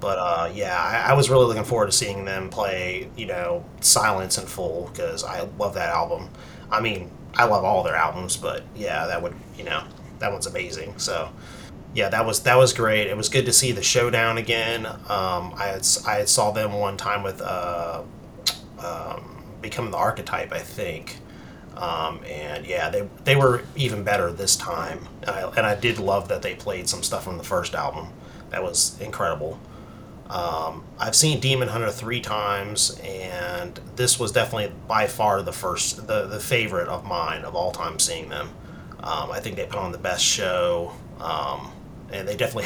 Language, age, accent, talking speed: English, 30-49, American, 190 wpm